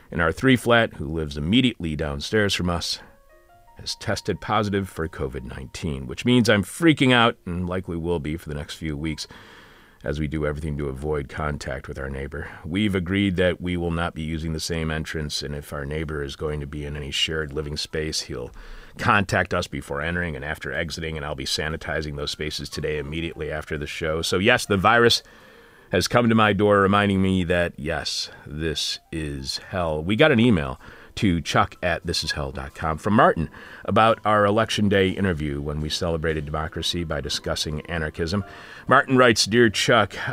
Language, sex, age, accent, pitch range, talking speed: English, male, 40-59, American, 75-100 Hz, 185 wpm